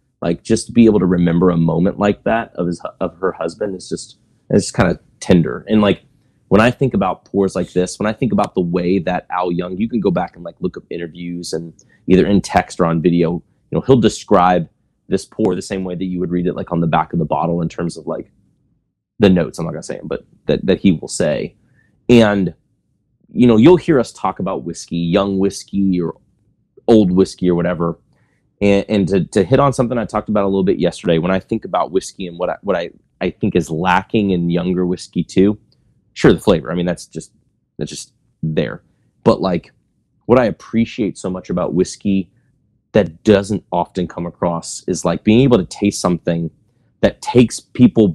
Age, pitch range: 30-49, 85-110 Hz